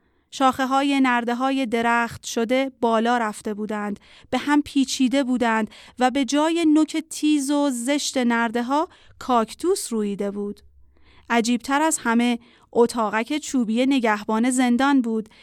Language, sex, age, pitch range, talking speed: Persian, female, 40-59, 225-270 Hz, 130 wpm